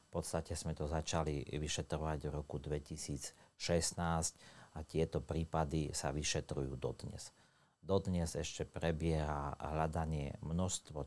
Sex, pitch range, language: male, 75-80 Hz, Slovak